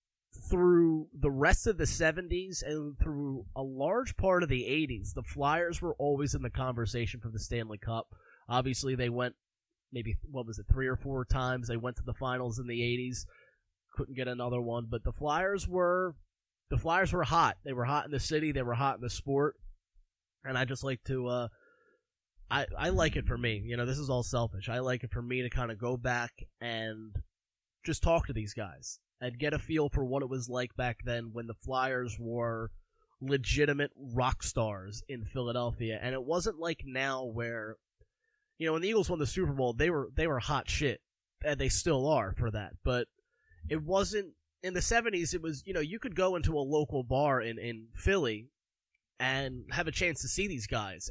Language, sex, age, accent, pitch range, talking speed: English, male, 20-39, American, 120-145 Hz, 210 wpm